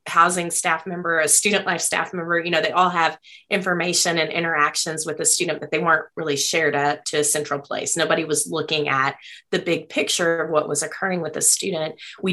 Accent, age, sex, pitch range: American, 30-49, female, 150-190 Hz